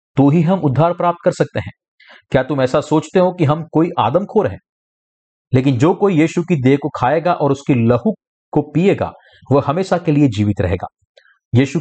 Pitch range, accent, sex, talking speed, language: 130-175 Hz, native, male, 195 wpm, Hindi